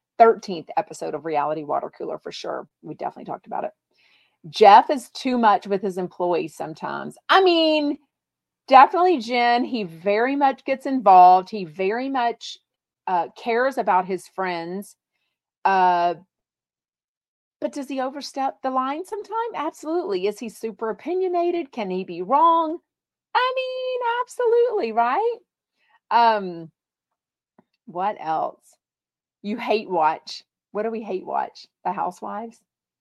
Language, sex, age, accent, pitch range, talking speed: English, female, 40-59, American, 190-285 Hz, 130 wpm